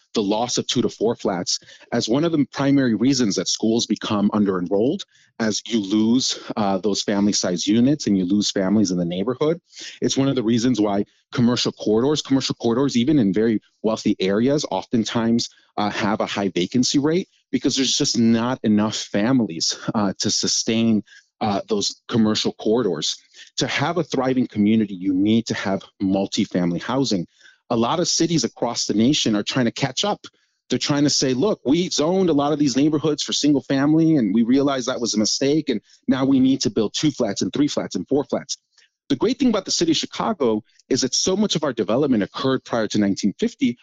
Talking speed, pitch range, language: 200 wpm, 105-145 Hz, English